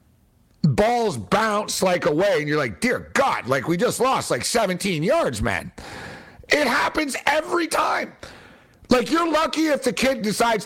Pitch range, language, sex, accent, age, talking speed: 185-245 Hz, English, male, American, 50-69, 160 wpm